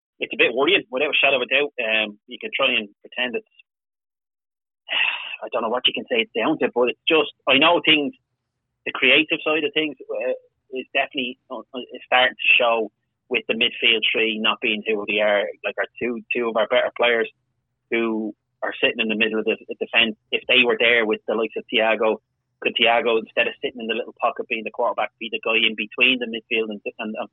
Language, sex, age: English, male, 30-49